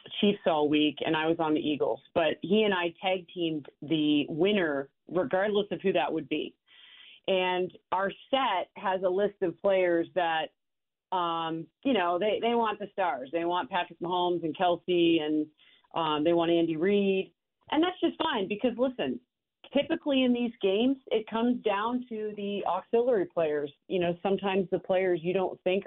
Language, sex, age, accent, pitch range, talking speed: English, female, 40-59, American, 170-205 Hz, 175 wpm